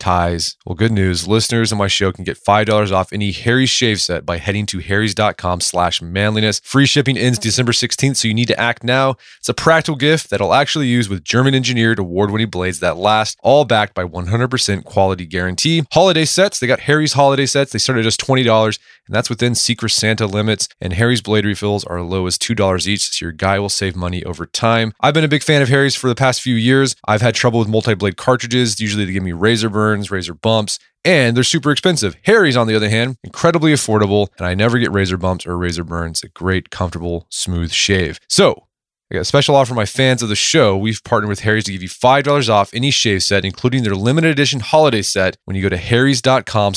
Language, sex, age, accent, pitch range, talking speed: English, male, 20-39, American, 100-130 Hz, 225 wpm